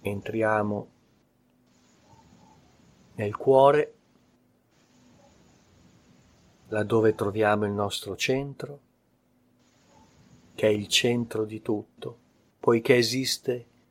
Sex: male